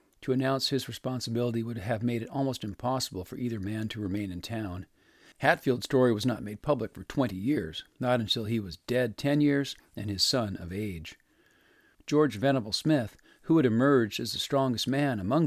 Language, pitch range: English, 105-135 Hz